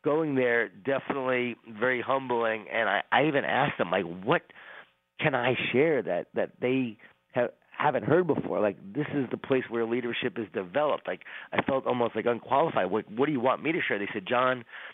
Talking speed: 195 wpm